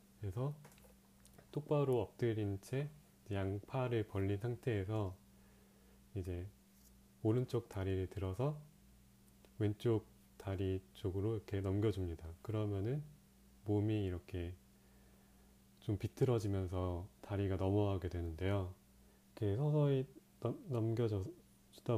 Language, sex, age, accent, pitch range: Korean, male, 30-49, native, 90-115 Hz